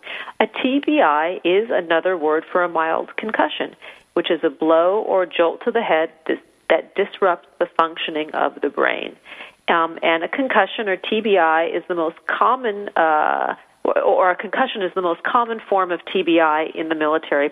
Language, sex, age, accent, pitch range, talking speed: English, female, 40-59, American, 170-215 Hz, 170 wpm